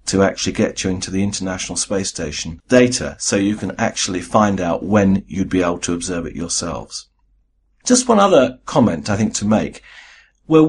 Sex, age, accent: male, 50-69, British